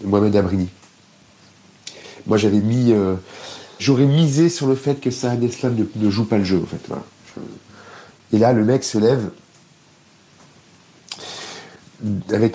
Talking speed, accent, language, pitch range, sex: 135 wpm, French, French, 100-120 Hz, male